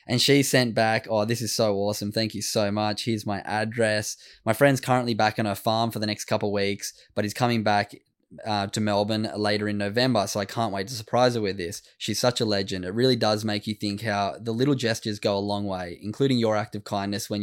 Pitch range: 105-125 Hz